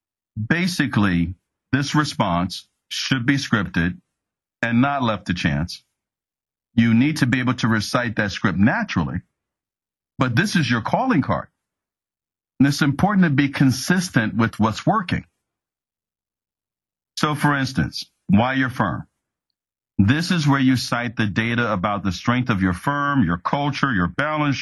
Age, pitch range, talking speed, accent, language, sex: 50-69, 110-145 Hz, 145 wpm, American, English, male